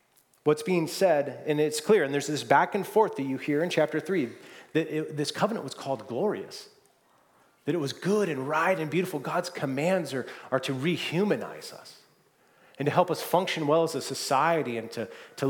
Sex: male